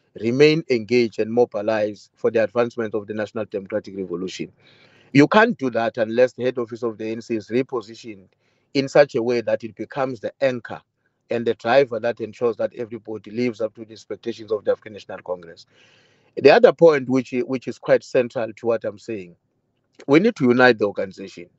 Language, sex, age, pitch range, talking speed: English, male, 30-49, 115-135 Hz, 190 wpm